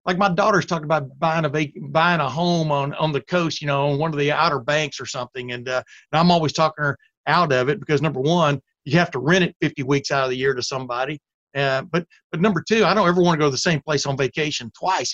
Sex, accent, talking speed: male, American, 275 wpm